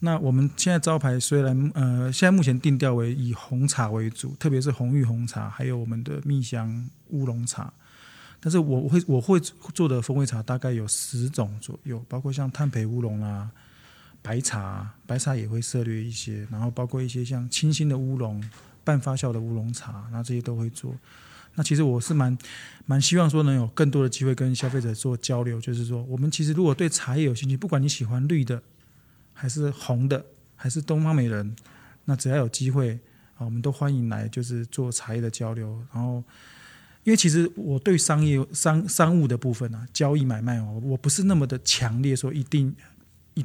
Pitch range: 120-145 Hz